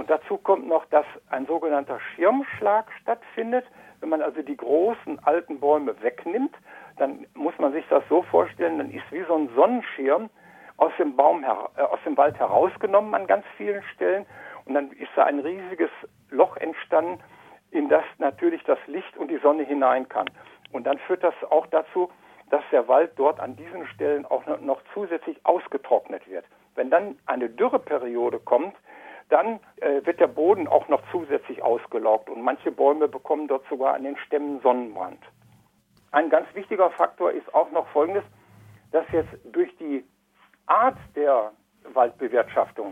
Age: 60-79